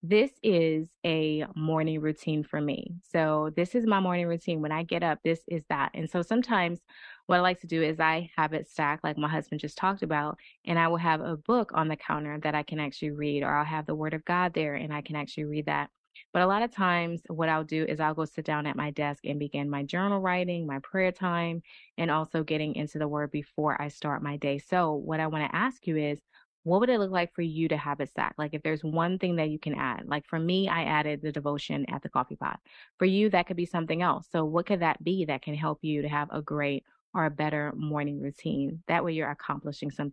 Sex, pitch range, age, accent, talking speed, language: female, 150-180 Hz, 20-39, American, 255 wpm, English